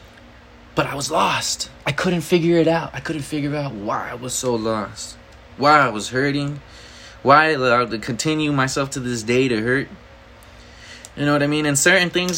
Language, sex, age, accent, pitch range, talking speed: English, male, 20-39, American, 100-155 Hz, 200 wpm